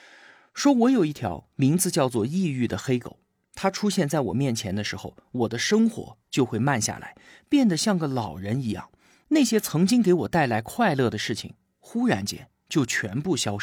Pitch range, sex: 115-180 Hz, male